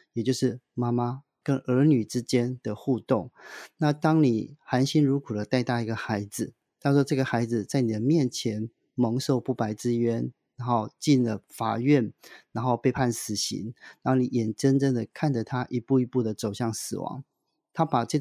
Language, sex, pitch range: Chinese, male, 115-145 Hz